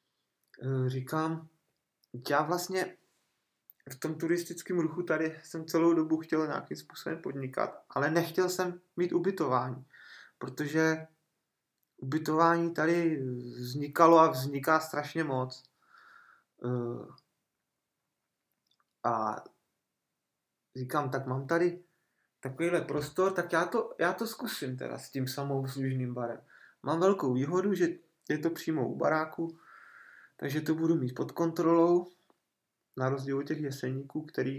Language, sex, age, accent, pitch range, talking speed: Czech, male, 20-39, native, 135-170 Hz, 115 wpm